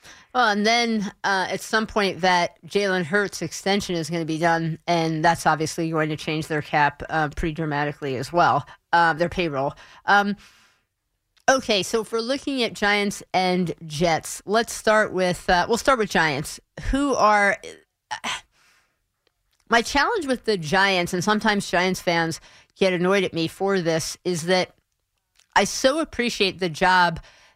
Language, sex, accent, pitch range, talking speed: English, female, American, 165-210 Hz, 155 wpm